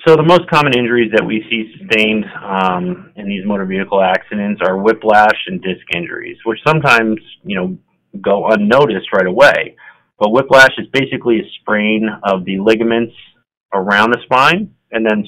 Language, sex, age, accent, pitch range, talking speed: English, male, 30-49, American, 95-115 Hz, 165 wpm